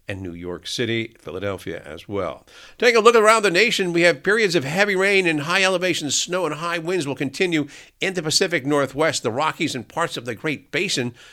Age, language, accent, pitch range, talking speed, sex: 50-69, English, American, 130-170 Hz, 210 wpm, male